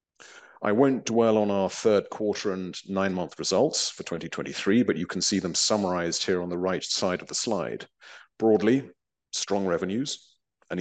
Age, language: 40-59, English